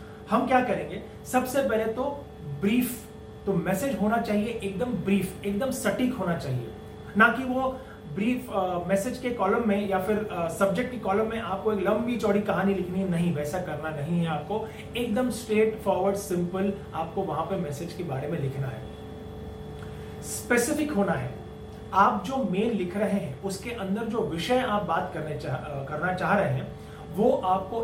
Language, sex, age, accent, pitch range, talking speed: English, male, 30-49, Indian, 185-225 Hz, 130 wpm